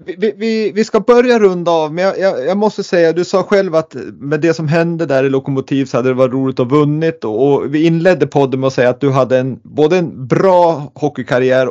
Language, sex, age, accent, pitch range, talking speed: Swedish, male, 30-49, native, 120-155 Hz, 250 wpm